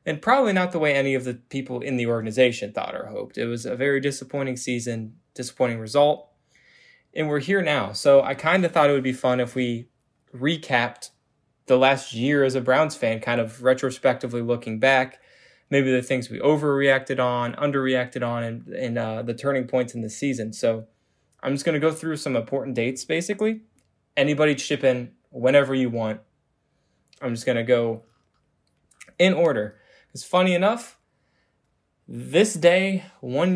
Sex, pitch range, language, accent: male, 120-150 Hz, English, American